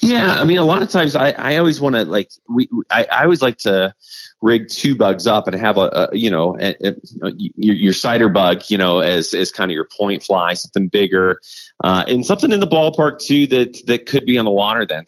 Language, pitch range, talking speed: English, 95-125 Hz, 245 wpm